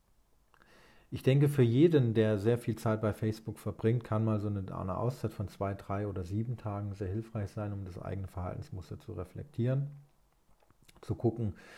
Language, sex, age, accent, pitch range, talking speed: German, male, 40-59, German, 95-115 Hz, 175 wpm